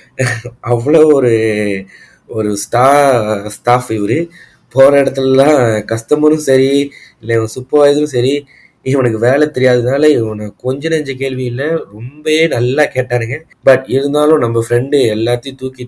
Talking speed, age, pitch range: 110 wpm, 20-39, 115-140 Hz